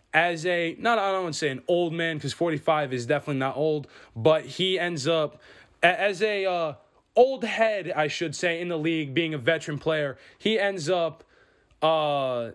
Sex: male